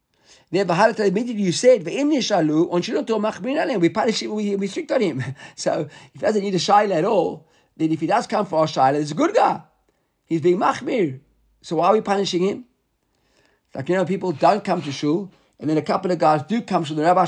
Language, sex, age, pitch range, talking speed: English, male, 50-69, 155-220 Hz, 210 wpm